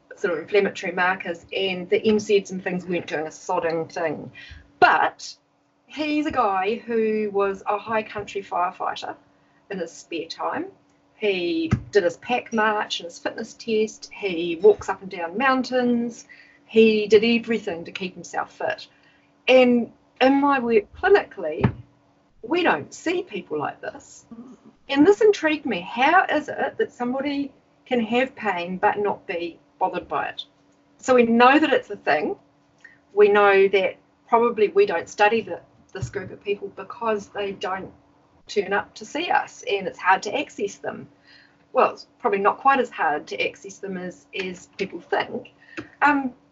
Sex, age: female, 40-59